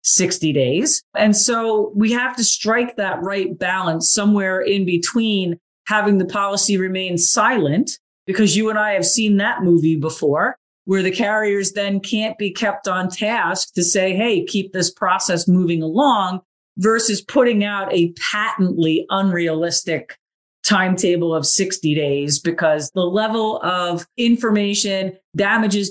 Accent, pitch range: American, 180-215 Hz